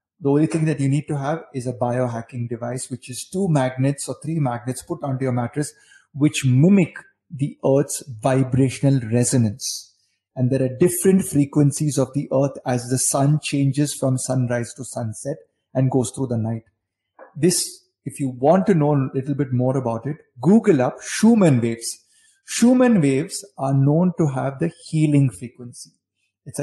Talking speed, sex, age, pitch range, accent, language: 170 wpm, male, 30-49, 125-150 Hz, native, Hindi